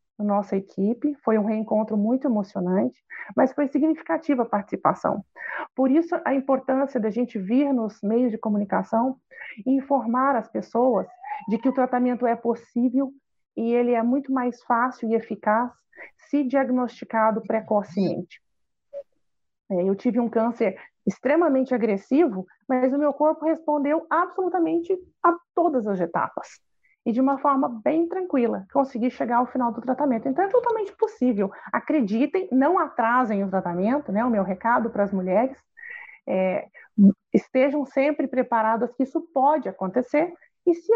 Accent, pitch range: Brazilian, 225-310 Hz